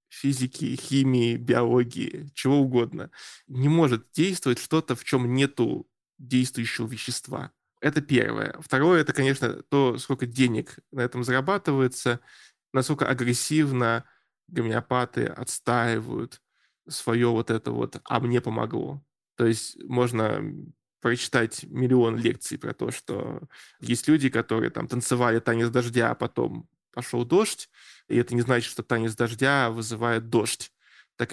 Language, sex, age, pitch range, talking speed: Russian, male, 20-39, 120-130 Hz, 125 wpm